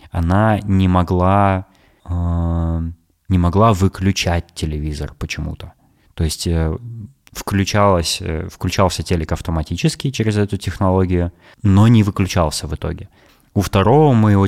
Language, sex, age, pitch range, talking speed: Russian, male, 20-39, 85-110 Hz, 100 wpm